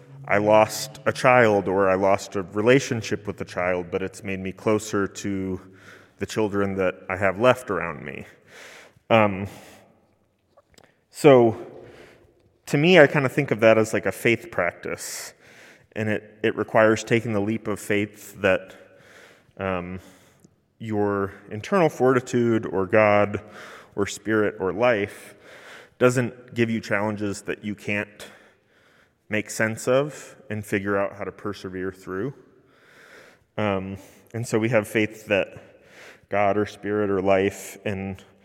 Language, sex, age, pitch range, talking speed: English, male, 30-49, 95-110 Hz, 140 wpm